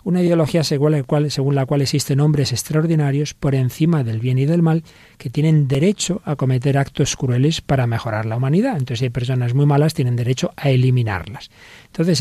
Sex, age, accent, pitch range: male, 40-59, Spanish, 125-155 Hz